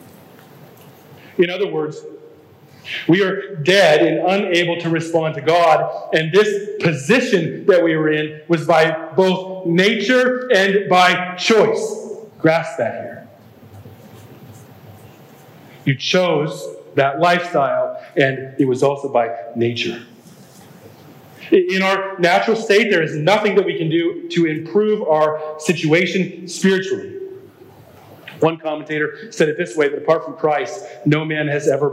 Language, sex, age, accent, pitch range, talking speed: English, male, 40-59, American, 145-195 Hz, 130 wpm